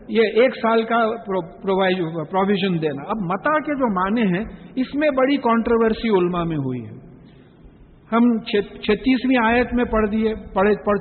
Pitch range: 180-225 Hz